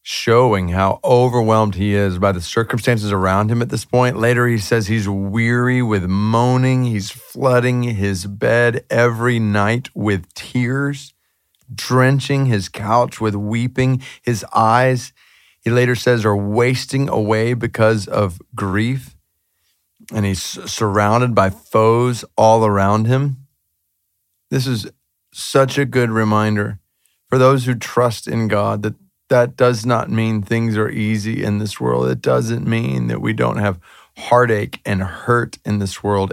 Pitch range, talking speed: 100-125 Hz, 145 wpm